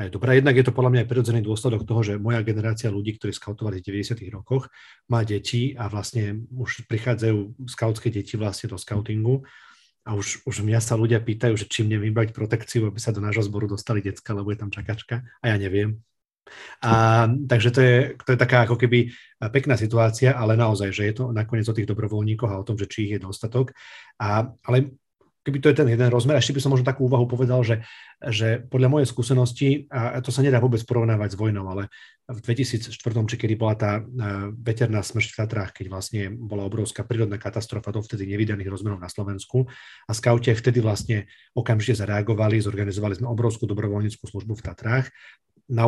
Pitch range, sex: 105-125 Hz, male